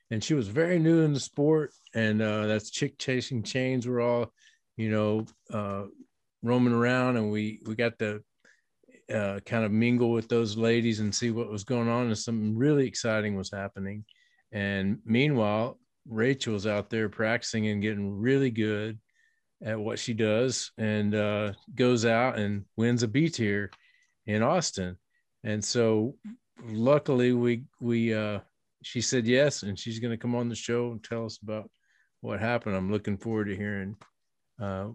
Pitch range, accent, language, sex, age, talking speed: 100-120 Hz, American, English, male, 40-59, 170 wpm